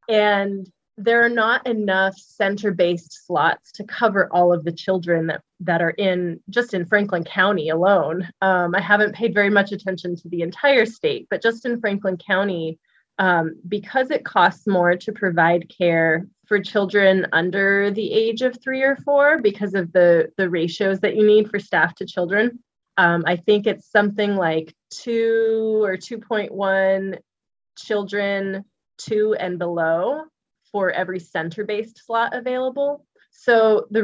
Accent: American